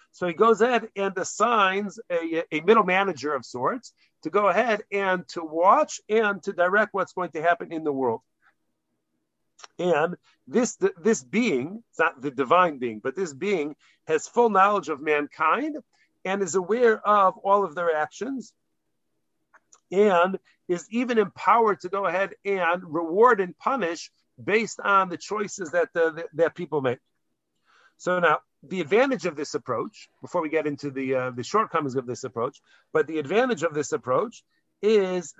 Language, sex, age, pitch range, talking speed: English, male, 50-69, 160-205 Hz, 170 wpm